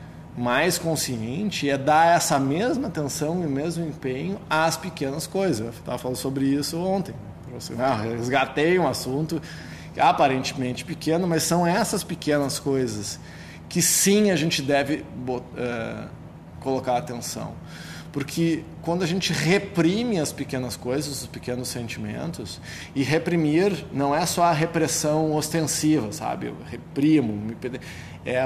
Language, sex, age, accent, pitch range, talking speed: Portuguese, male, 20-39, Brazilian, 130-170 Hz, 130 wpm